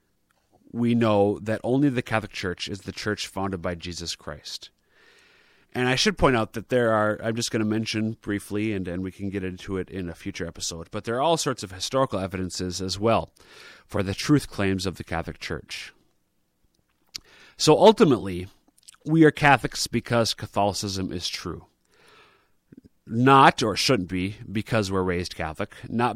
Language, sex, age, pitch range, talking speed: English, male, 30-49, 90-115 Hz, 170 wpm